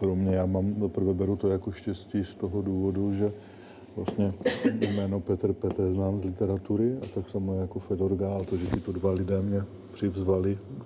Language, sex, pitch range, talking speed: Slovak, male, 95-105 Hz, 180 wpm